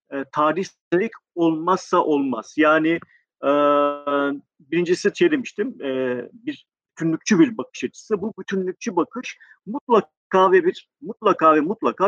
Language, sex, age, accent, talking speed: Turkish, male, 50-69, native, 115 wpm